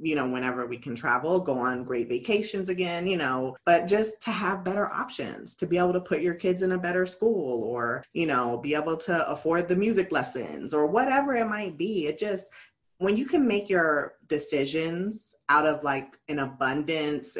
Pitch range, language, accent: 145-190 Hz, English, American